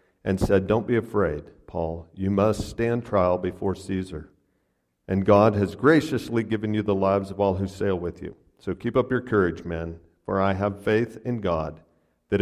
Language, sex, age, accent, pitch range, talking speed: English, male, 50-69, American, 85-110 Hz, 190 wpm